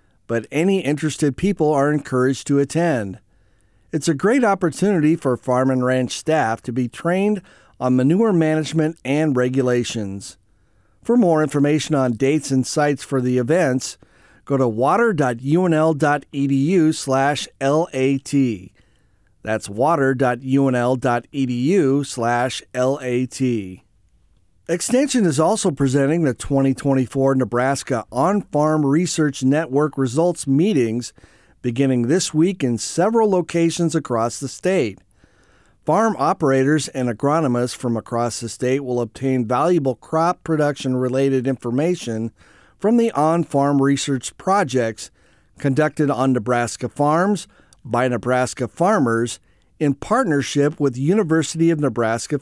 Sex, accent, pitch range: male, American, 120-155 Hz